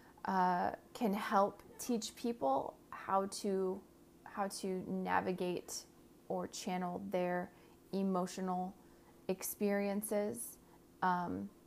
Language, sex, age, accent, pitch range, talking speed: English, female, 30-49, American, 175-195 Hz, 80 wpm